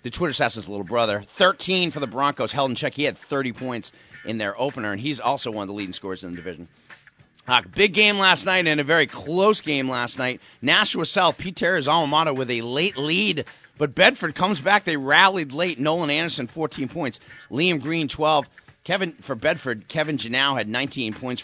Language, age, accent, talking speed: English, 30-49, American, 205 wpm